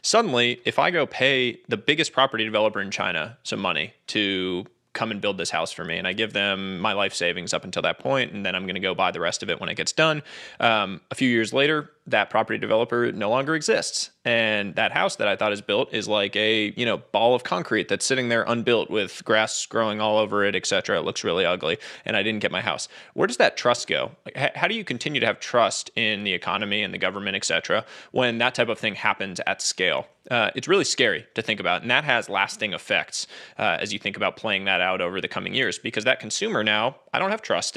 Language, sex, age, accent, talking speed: English, male, 20-39, American, 250 wpm